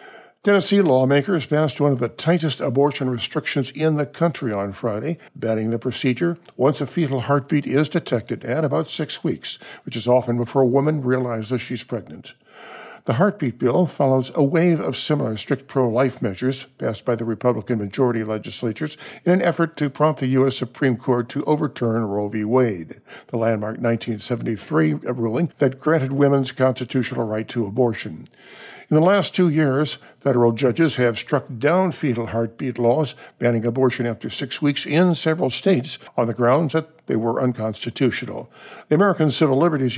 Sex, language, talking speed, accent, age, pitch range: male, English, 165 wpm, American, 60-79, 120-150 Hz